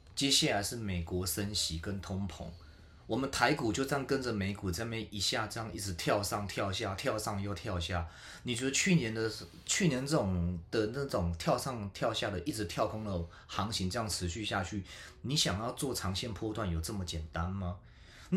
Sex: male